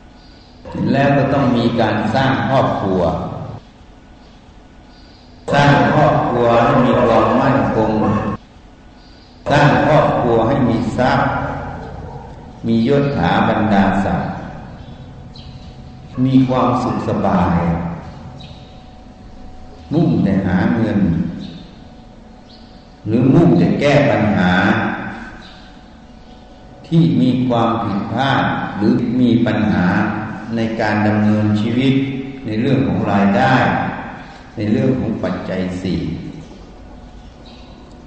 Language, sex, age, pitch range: Thai, male, 60-79, 100-130 Hz